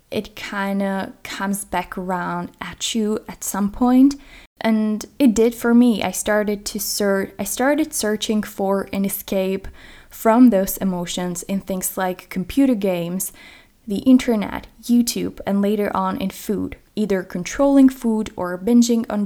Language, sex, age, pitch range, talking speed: English, female, 10-29, 185-230 Hz, 140 wpm